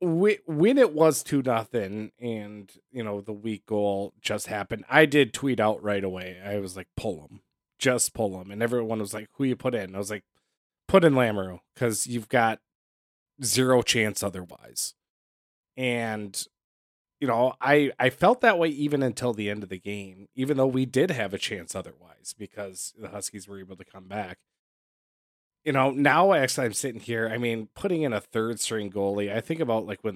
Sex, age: male, 20-39